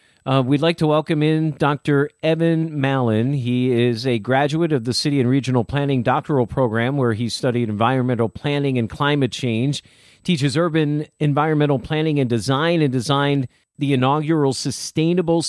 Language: English